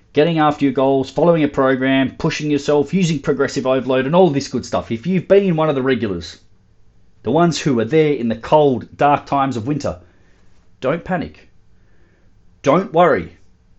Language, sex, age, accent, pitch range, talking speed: English, male, 40-59, Australian, 115-165 Hz, 175 wpm